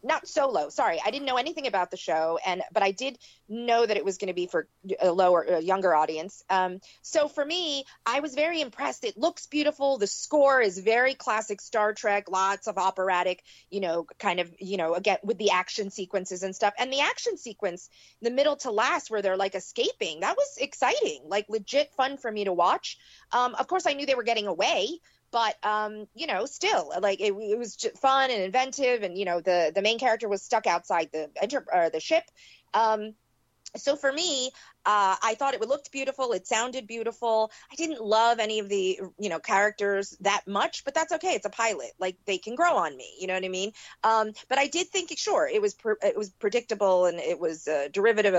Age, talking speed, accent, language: 30-49, 220 wpm, American, English